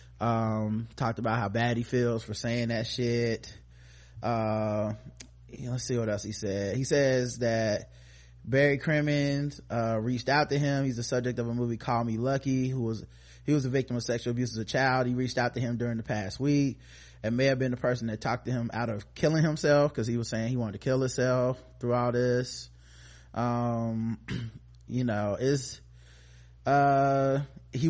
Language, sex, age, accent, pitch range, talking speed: English, male, 20-39, American, 110-130 Hz, 200 wpm